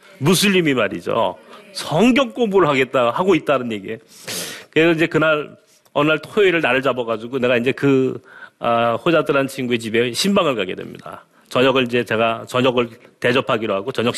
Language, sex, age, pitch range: Korean, male, 40-59, 135-200 Hz